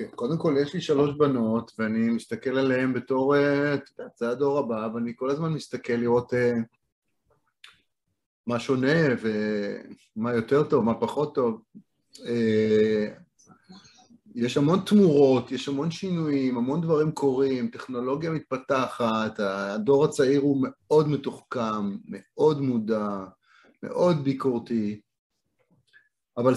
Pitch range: 120-155 Hz